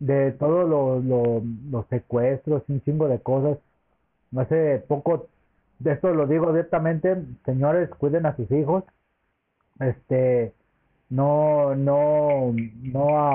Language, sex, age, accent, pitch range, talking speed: Spanish, male, 40-59, Mexican, 125-160 Hz, 120 wpm